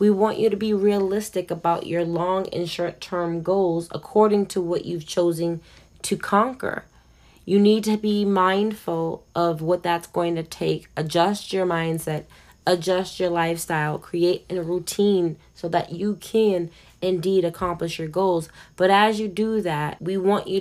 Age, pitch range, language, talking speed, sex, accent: 20-39, 170-205 Hz, English, 165 wpm, female, American